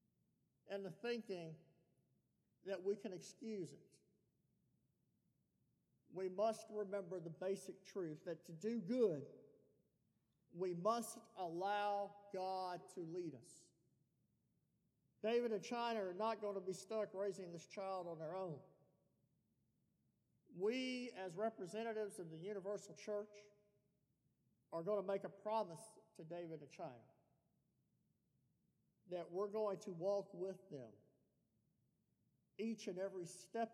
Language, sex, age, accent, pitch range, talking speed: English, male, 50-69, American, 175-210 Hz, 120 wpm